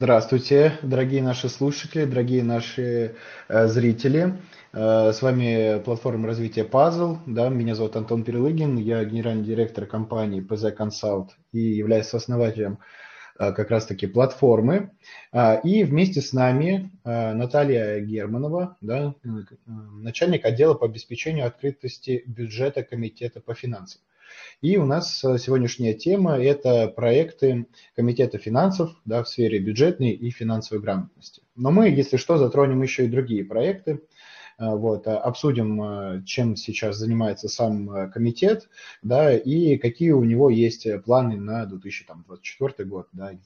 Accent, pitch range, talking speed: native, 110-140 Hz, 125 wpm